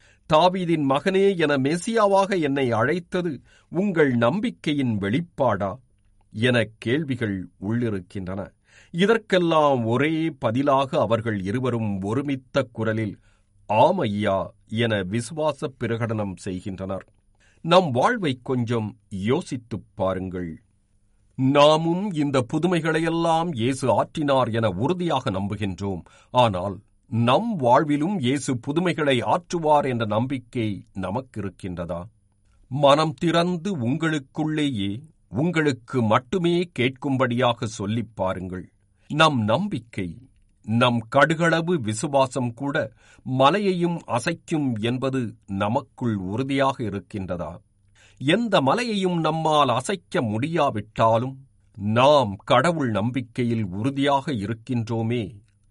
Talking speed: 85 wpm